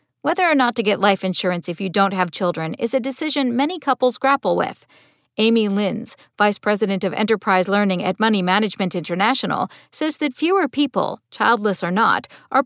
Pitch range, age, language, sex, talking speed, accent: 190-265 Hz, 50-69, English, female, 180 wpm, American